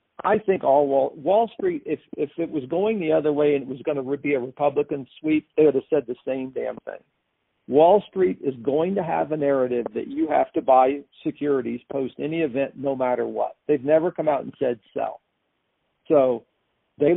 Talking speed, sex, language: 210 wpm, male, English